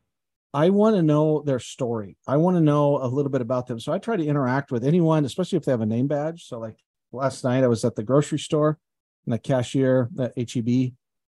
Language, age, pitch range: English, 50-69, 120-150 Hz